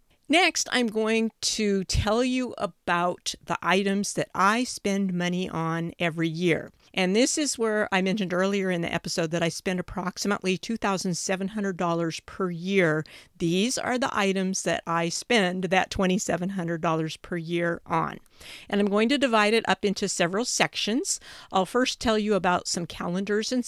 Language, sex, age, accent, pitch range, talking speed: English, female, 50-69, American, 175-225 Hz, 160 wpm